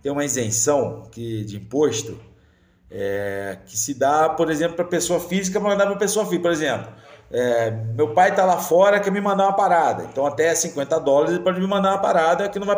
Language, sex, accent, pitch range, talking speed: Portuguese, male, Brazilian, 130-175 Hz, 210 wpm